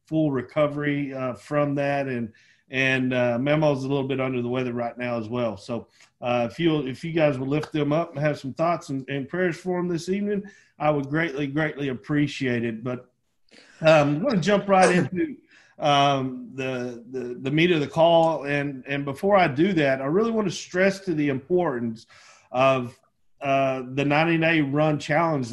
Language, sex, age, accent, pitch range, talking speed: English, male, 40-59, American, 135-165 Hz, 195 wpm